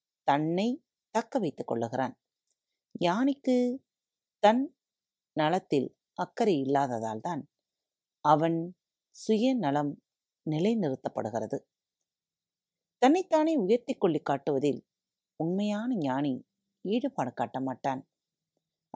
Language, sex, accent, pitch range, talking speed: Tamil, female, native, 140-220 Hz, 65 wpm